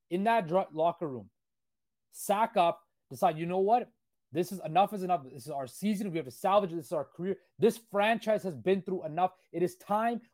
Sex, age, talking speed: male, 30-49, 220 wpm